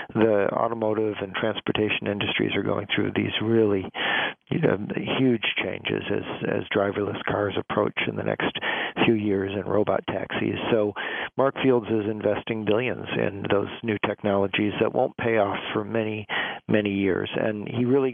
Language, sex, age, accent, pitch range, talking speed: English, male, 50-69, American, 100-110 Hz, 160 wpm